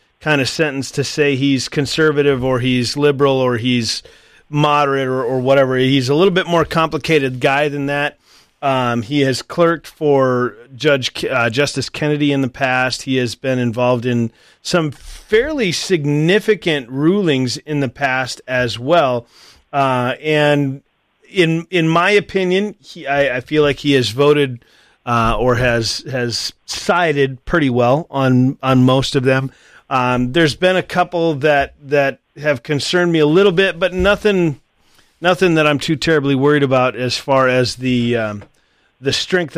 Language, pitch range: English, 130-165 Hz